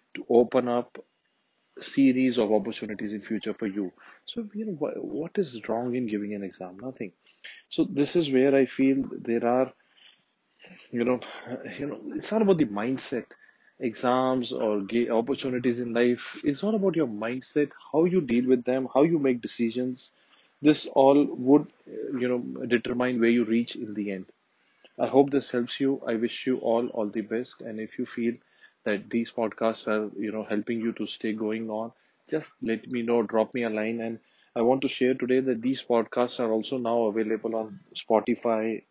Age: 30-49